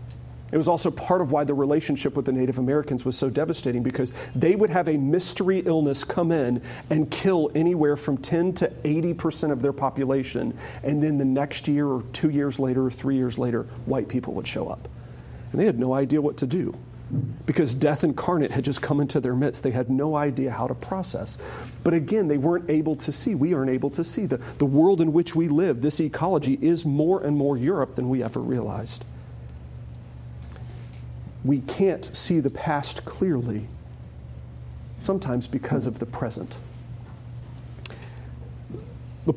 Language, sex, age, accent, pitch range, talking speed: English, male, 40-59, American, 125-155 Hz, 180 wpm